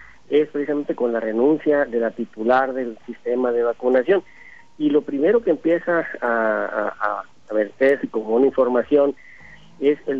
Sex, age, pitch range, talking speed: male, 50-69, 120-150 Hz, 165 wpm